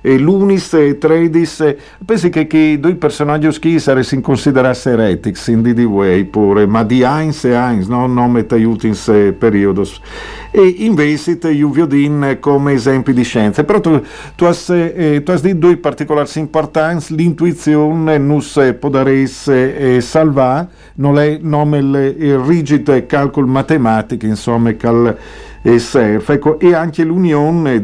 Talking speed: 140 wpm